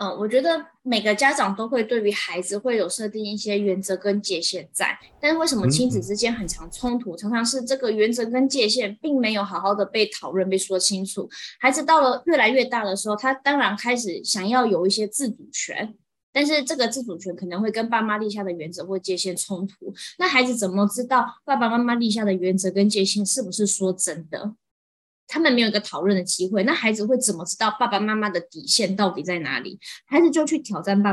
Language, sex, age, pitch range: Chinese, female, 10-29, 195-250 Hz